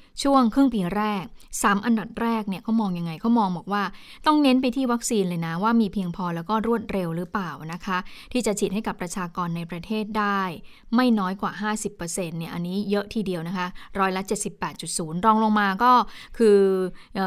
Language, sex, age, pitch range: Thai, female, 20-39, 190-230 Hz